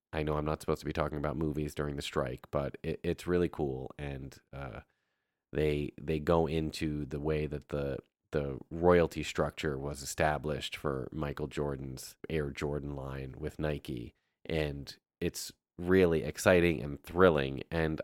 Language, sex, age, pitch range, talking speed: English, male, 30-49, 75-95 Hz, 160 wpm